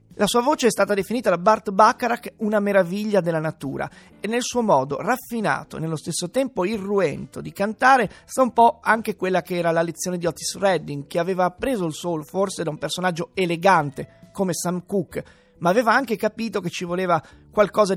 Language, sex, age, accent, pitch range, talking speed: Italian, male, 30-49, native, 170-220 Hz, 195 wpm